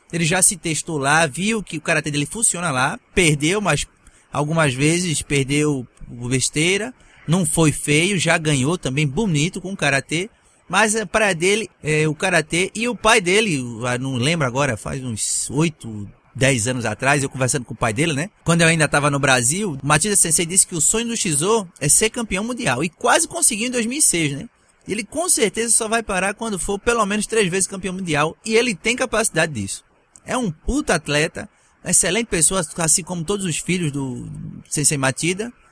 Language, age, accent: English, 20-39, Brazilian